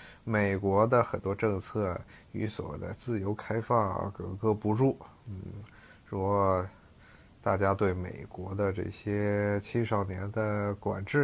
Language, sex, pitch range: Chinese, male, 100-120 Hz